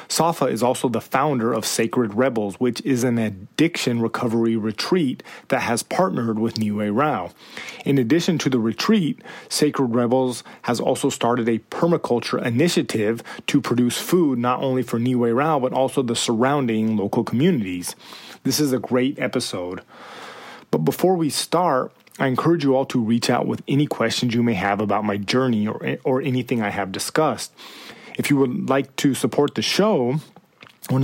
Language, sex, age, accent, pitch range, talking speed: English, male, 30-49, American, 115-135 Hz, 170 wpm